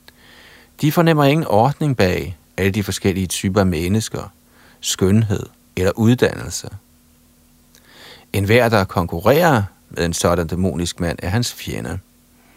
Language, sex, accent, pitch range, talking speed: Danish, male, native, 90-115 Hz, 120 wpm